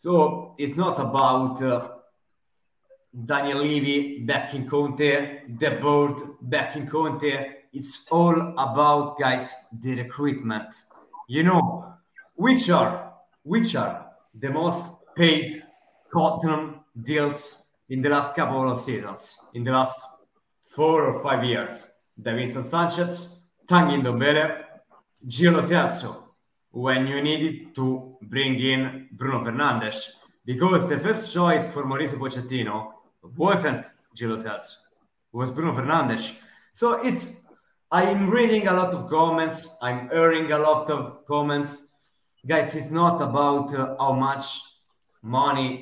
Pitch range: 130-160 Hz